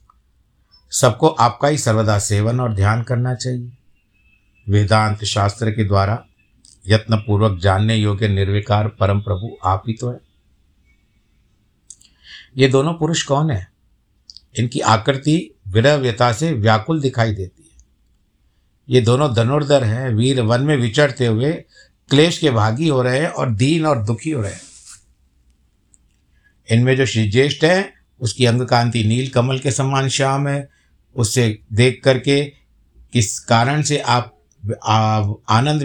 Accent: native